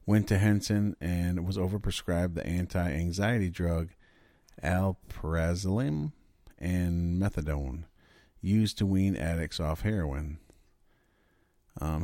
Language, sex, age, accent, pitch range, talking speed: English, male, 40-59, American, 80-100 Hz, 95 wpm